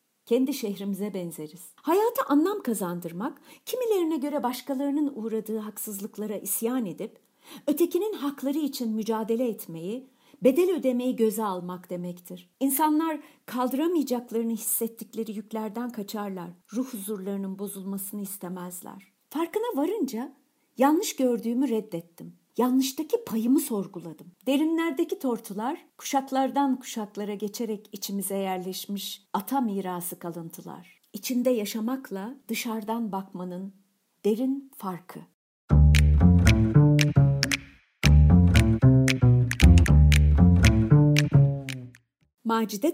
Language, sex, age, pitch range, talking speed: Turkish, female, 50-69, 180-270 Hz, 80 wpm